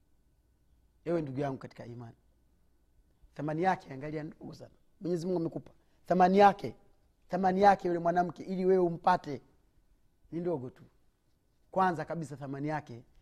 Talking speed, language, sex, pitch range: 130 wpm, Swahili, male, 125-155 Hz